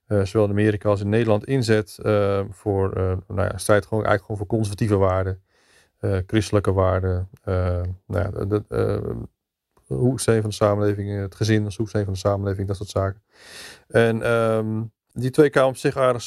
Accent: Dutch